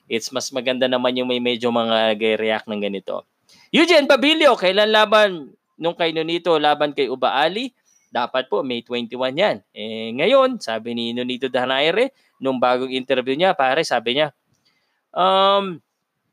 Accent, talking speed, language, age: native, 150 wpm, Filipino, 20-39